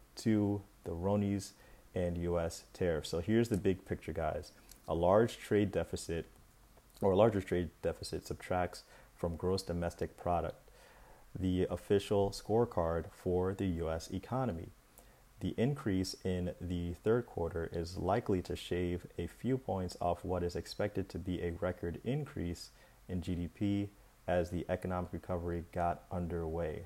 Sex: male